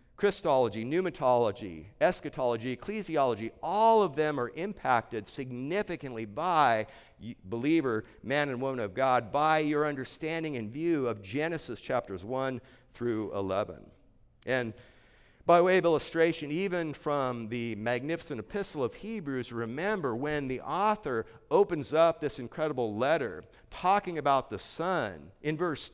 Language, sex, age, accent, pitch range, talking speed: English, male, 50-69, American, 120-165 Hz, 125 wpm